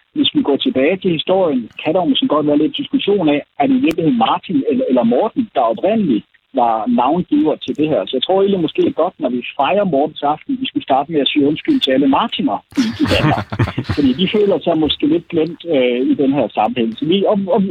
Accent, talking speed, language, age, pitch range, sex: native, 215 wpm, Danish, 60-79, 150-255 Hz, male